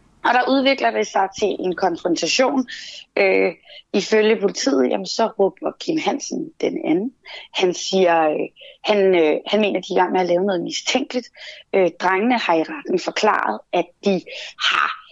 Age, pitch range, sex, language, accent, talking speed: 30-49, 185-240 Hz, female, Danish, native, 175 wpm